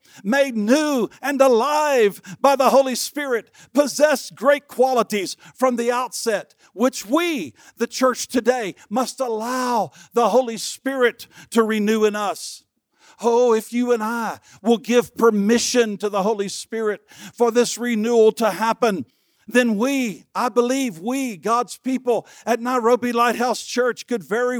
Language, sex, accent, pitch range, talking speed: English, male, American, 220-250 Hz, 140 wpm